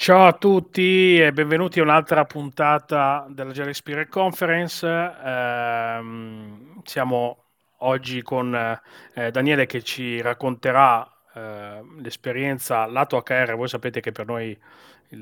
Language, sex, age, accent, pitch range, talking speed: Italian, male, 30-49, native, 115-150 Hz, 120 wpm